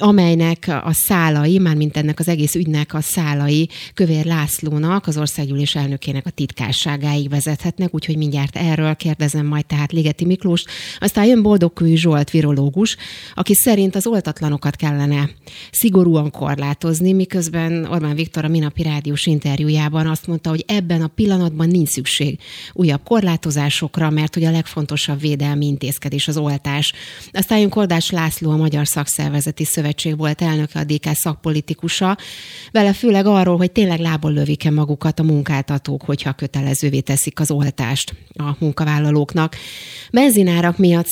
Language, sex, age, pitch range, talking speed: Hungarian, female, 30-49, 150-170 Hz, 140 wpm